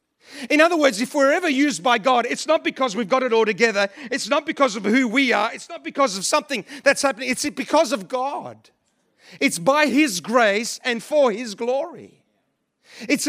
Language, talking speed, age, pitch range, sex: English, 200 wpm, 40-59, 235-295 Hz, male